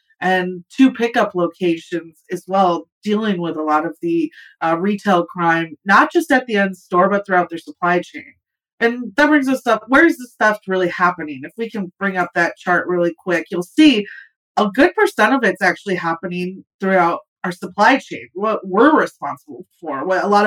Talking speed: 190 wpm